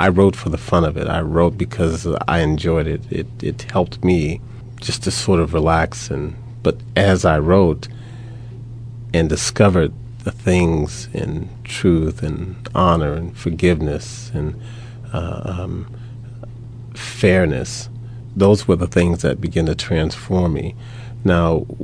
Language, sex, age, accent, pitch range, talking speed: English, male, 40-59, American, 85-120 Hz, 140 wpm